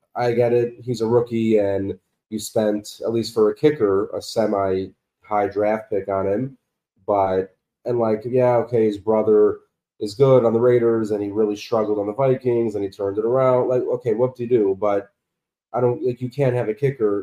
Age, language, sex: 30-49, English, male